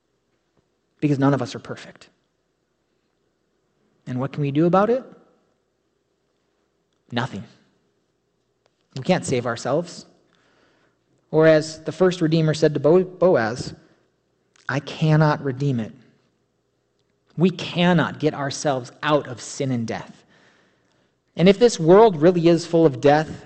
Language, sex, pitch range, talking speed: English, male, 125-165 Hz, 125 wpm